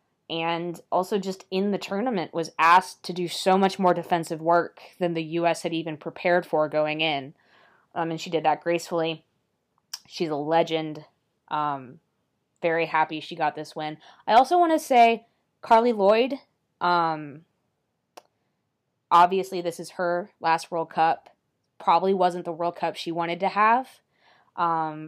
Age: 20-39